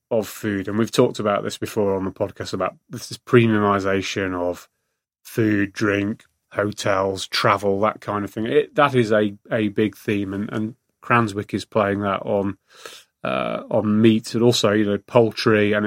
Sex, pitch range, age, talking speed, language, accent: male, 105-125 Hz, 30-49, 180 wpm, English, British